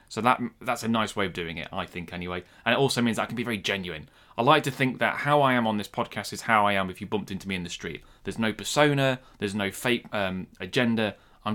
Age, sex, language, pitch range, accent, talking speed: 20-39, male, English, 95-125 Hz, British, 280 wpm